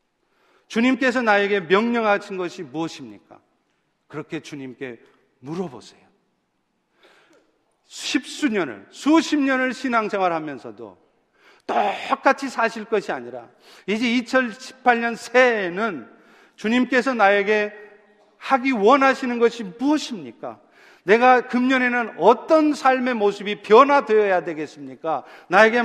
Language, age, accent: Korean, 40-59, native